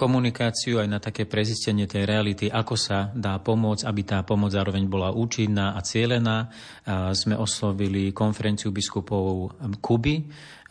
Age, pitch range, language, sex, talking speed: 30-49, 100-110 Hz, Slovak, male, 135 wpm